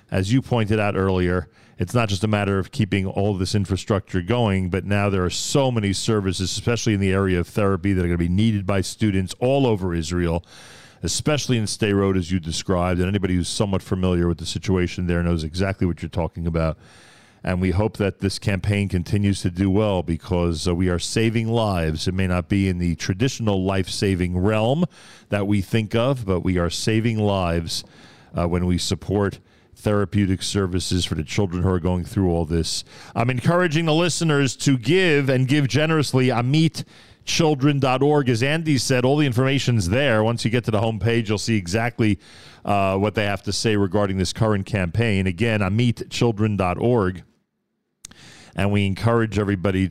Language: English